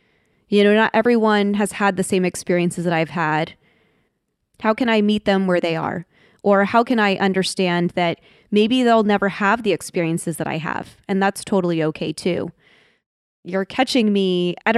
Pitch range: 175-215 Hz